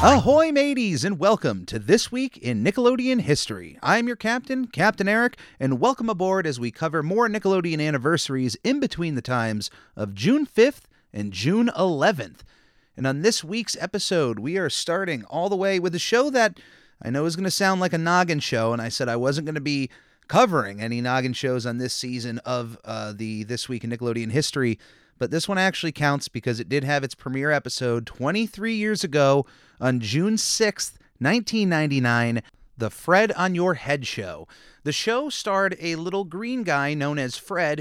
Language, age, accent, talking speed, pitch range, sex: English, 30-49, American, 185 wpm, 120-190 Hz, male